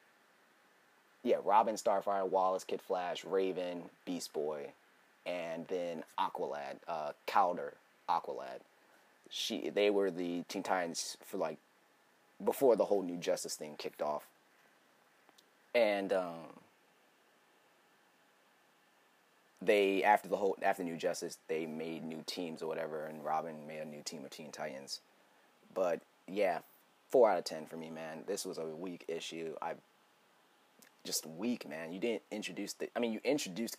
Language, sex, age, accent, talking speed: English, male, 30-49, American, 145 wpm